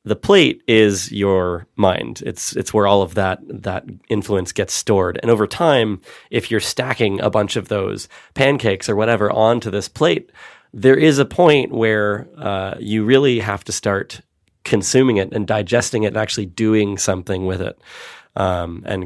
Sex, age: male, 20-39